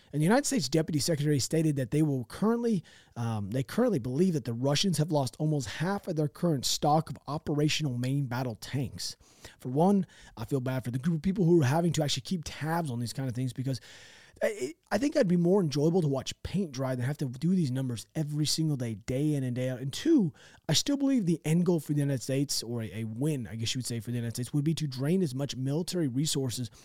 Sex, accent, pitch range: male, American, 125-165 Hz